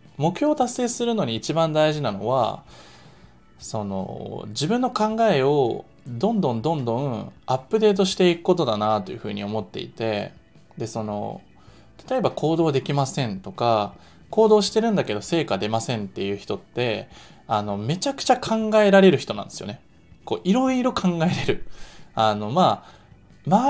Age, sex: 20-39, male